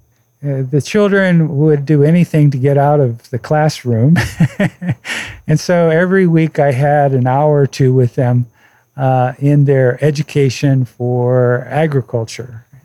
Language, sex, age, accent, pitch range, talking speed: English, male, 50-69, American, 120-150 Hz, 140 wpm